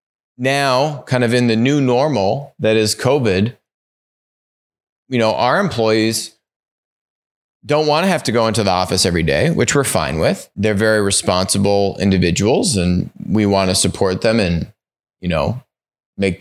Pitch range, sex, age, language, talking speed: 100-135 Hz, male, 30-49, English, 155 wpm